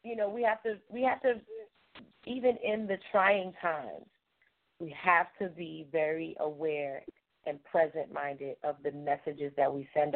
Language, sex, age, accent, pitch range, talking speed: English, female, 40-59, American, 160-225 Hz, 165 wpm